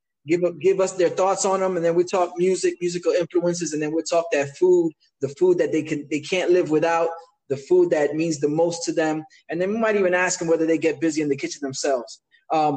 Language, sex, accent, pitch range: English, male, American, 160-205 Hz